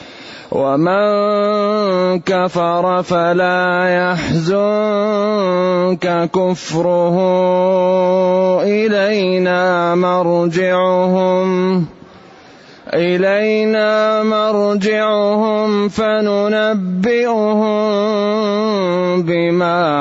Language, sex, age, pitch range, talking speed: Arabic, male, 30-49, 170-195 Hz, 35 wpm